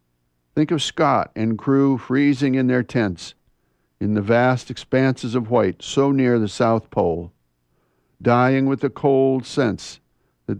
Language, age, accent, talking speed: English, 60-79, American, 145 wpm